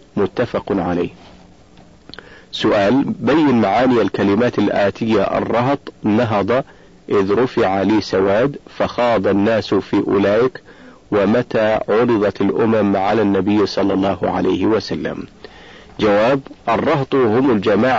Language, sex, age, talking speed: Arabic, male, 40-59, 100 wpm